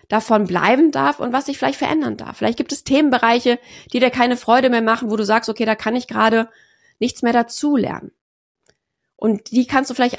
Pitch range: 220-255 Hz